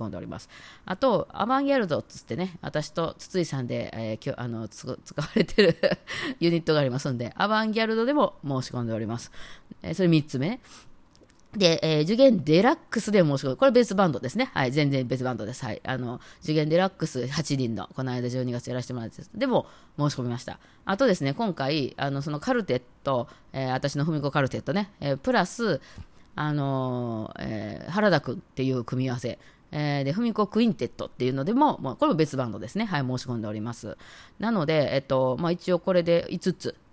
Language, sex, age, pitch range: Japanese, female, 20-39, 125-180 Hz